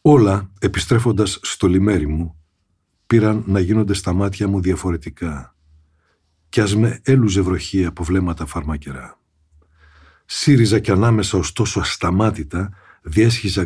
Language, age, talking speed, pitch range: Greek, 60-79, 115 wpm, 90-115 Hz